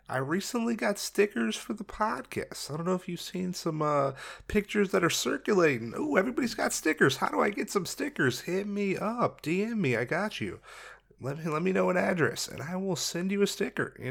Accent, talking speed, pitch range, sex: American, 215 wpm, 135-170 Hz, male